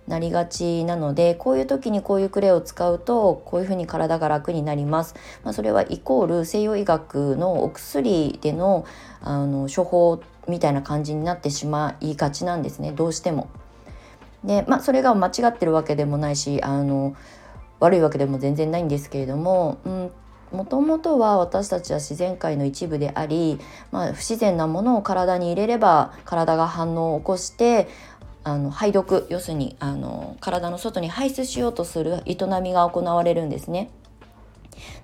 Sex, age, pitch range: female, 20-39, 150-195 Hz